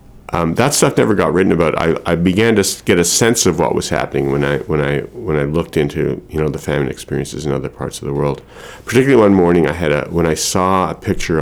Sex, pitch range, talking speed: male, 70-85 Hz, 250 wpm